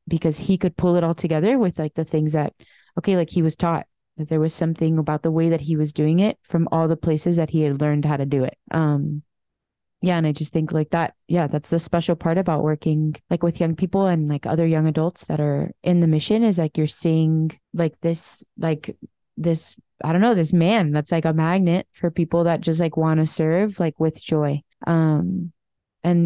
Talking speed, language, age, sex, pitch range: 230 wpm, English, 20-39, female, 155-175 Hz